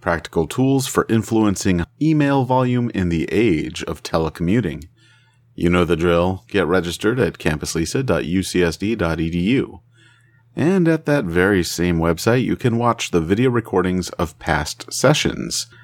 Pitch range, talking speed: 85-120 Hz, 130 wpm